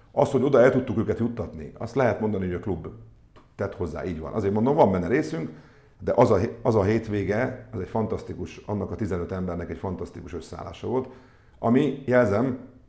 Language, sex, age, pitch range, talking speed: Hungarian, male, 50-69, 85-110 Hz, 190 wpm